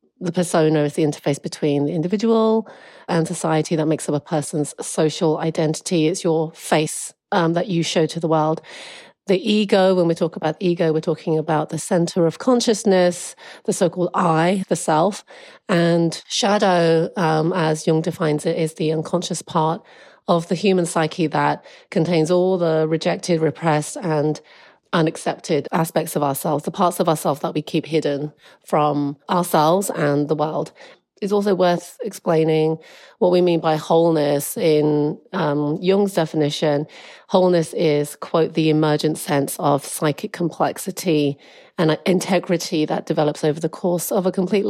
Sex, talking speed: female, 155 wpm